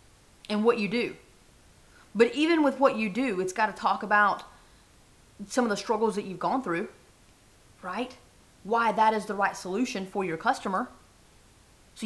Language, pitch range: English, 185-245 Hz